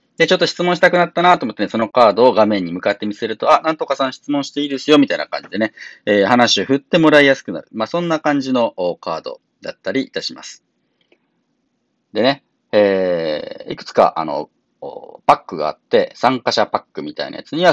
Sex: male